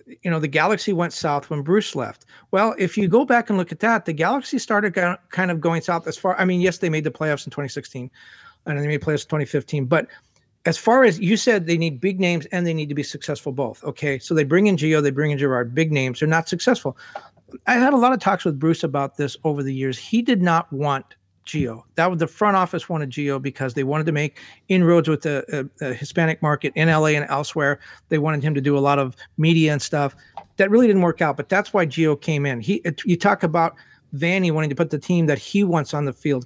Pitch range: 145-185 Hz